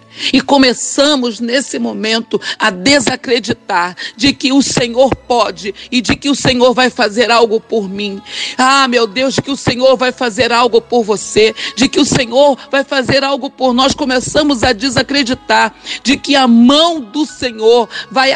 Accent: Brazilian